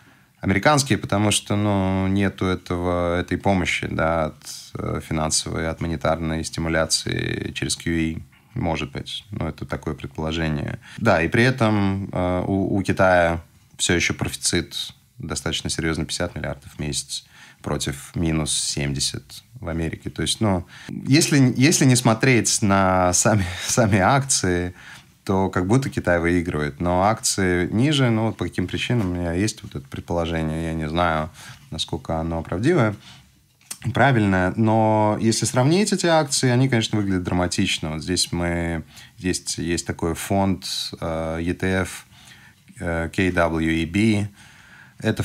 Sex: male